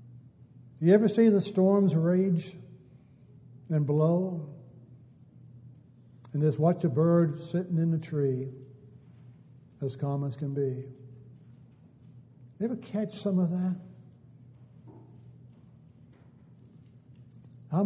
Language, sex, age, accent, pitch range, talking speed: English, male, 60-79, American, 130-175 Hz, 95 wpm